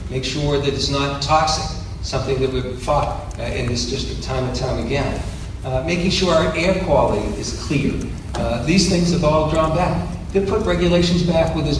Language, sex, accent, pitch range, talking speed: English, male, American, 115-155 Hz, 200 wpm